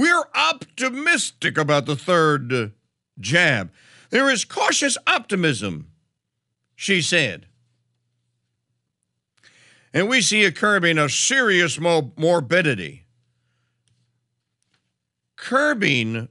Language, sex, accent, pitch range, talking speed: English, male, American, 135-220 Hz, 75 wpm